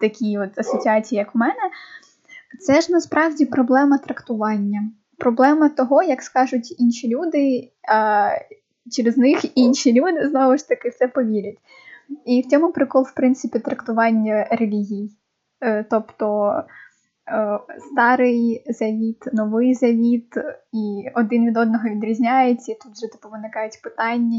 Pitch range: 220-260 Hz